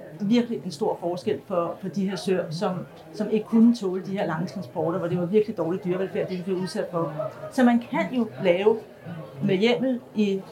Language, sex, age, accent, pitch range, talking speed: Danish, female, 40-59, native, 195-235 Hz, 205 wpm